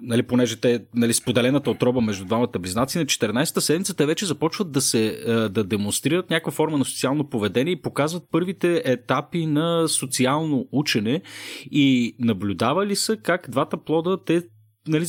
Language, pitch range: Bulgarian, 115-160 Hz